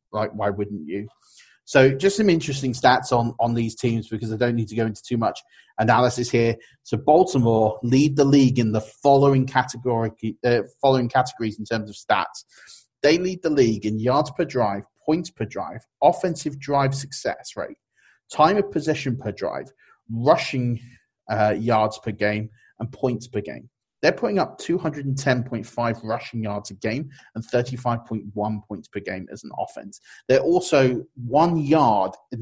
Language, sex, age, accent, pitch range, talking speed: English, male, 30-49, British, 115-140 Hz, 165 wpm